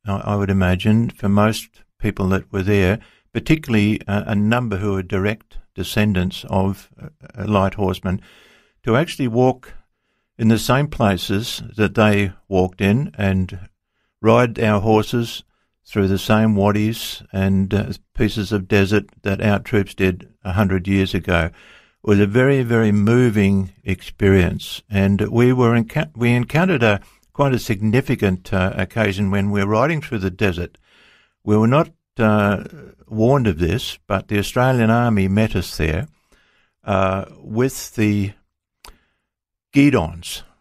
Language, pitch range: English, 95-110 Hz